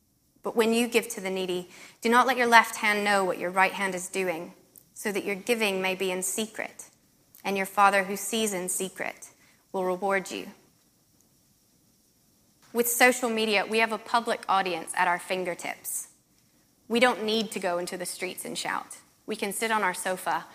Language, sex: English, female